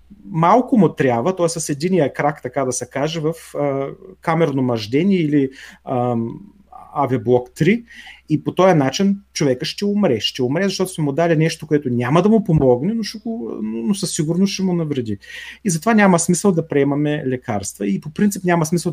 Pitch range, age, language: 135-170 Hz, 30-49, Bulgarian